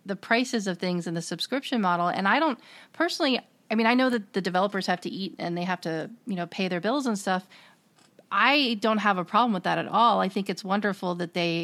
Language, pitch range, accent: English, 170-215 Hz, American